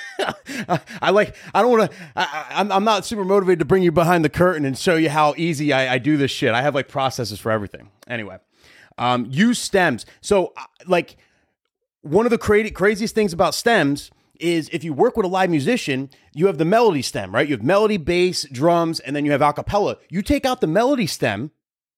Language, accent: English, American